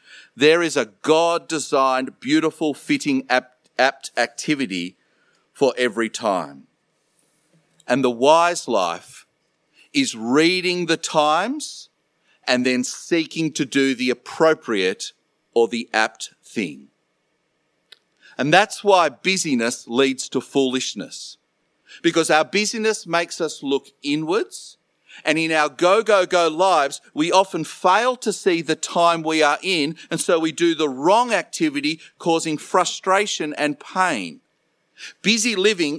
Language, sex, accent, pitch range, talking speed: English, male, Australian, 145-195 Hz, 120 wpm